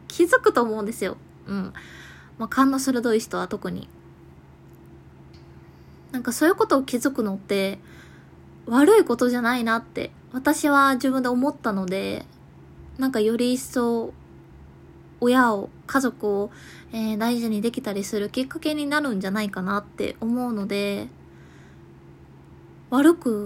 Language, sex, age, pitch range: Japanese, female, 20-39, 190-245 Hz